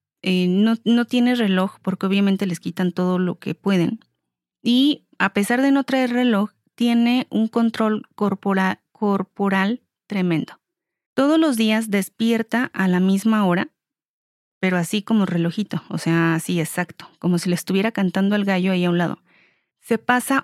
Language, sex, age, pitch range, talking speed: Spanish, female, 30-49, 180-230 Hz, 160 wpm